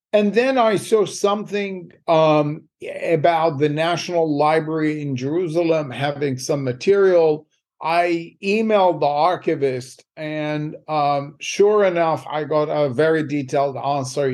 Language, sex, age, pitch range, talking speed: English, male, 50-69, 135-155 Hz, 120 wpm